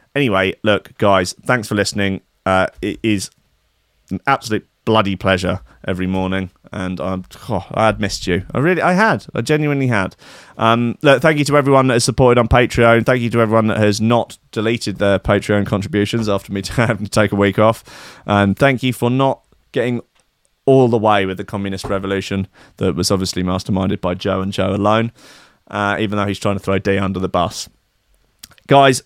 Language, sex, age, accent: English, male, 30-49, British